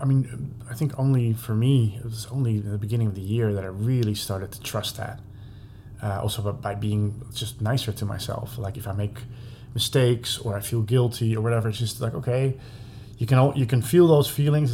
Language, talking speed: English, 220 wpm